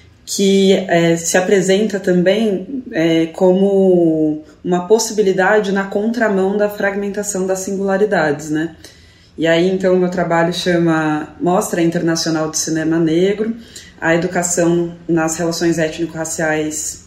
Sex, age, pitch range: female, 20-39, 165-200 Hz